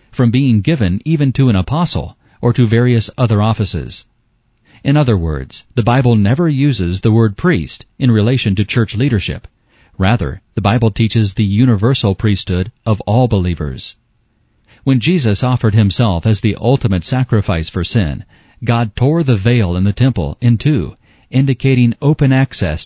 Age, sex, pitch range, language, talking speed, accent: 40-59, male, 95-125 Hz, English, 155 wpm, American